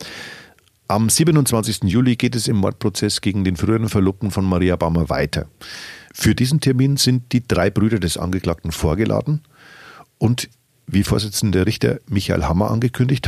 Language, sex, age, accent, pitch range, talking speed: German, male, 40-59, German, 95-120 Hz, 145 wpm